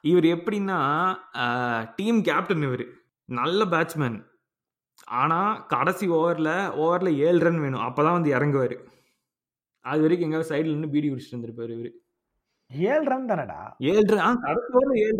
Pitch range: 130-180 Hz